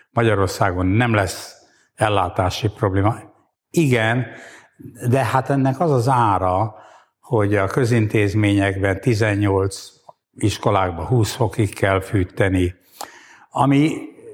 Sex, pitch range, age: male, 100-125 Hz, 60-79